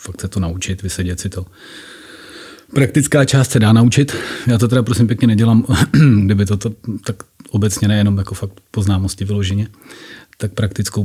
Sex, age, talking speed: male, 30-49, 165 wpm